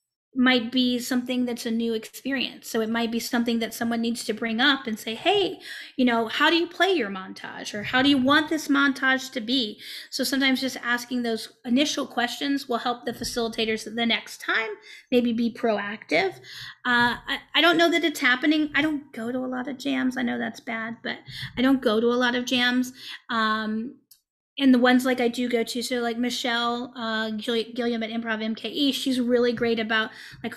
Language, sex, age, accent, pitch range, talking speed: English, female, 30-49, American, 235-270 Hz, 210 wpm